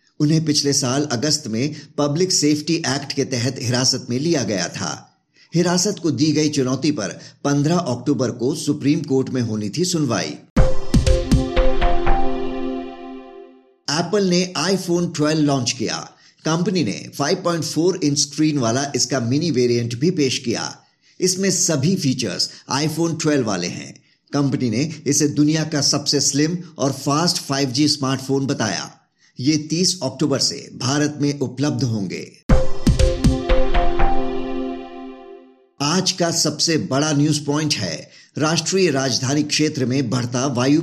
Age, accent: 50-69, native